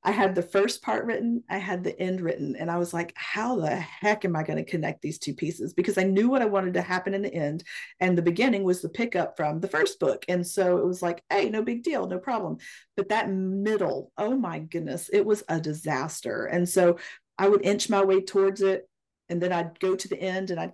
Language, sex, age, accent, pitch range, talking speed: English, female, 40-59, American, 170-200 Hz, 245 wpm